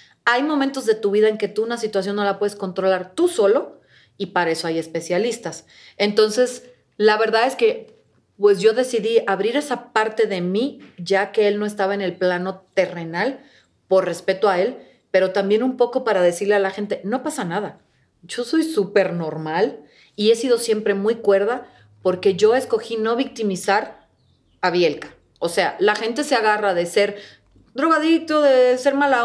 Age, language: 40-59, Spanish